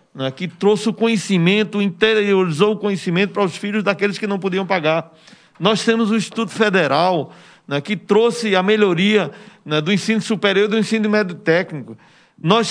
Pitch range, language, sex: 175-220 Hz, Portuguese, male